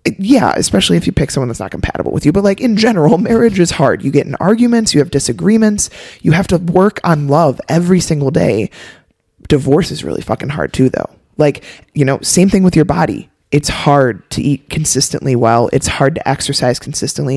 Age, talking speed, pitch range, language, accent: 20-39, 205 wpm, 130-175 Hz, English, American